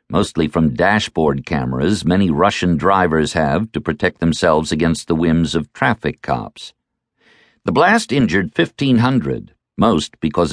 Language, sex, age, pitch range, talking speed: English, male, 50-69, 75-120 Hz, 130 wpm